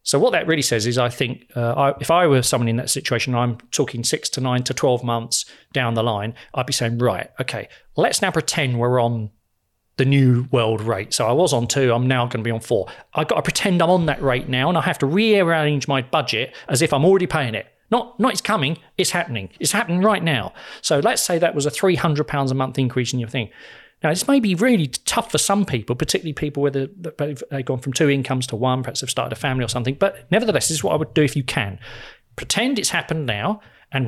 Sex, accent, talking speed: male, British, 245 wpm